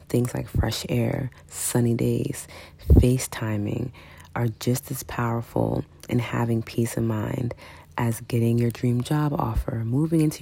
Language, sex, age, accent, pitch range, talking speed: English, female, 30-49, American, 100-120 Hz, 140 wpm